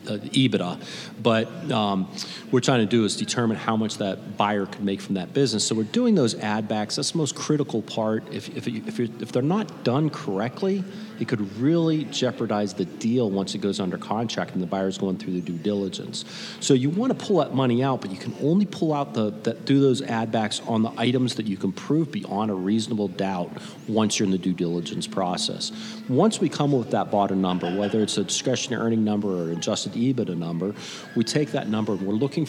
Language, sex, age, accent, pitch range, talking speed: English, male, 40-59, American, 100-140 Hz, 220 wpm